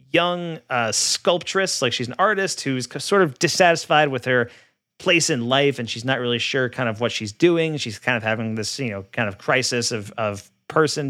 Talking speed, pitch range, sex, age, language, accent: 210 wpm, 115-145 Hz, male, 30-49, English, American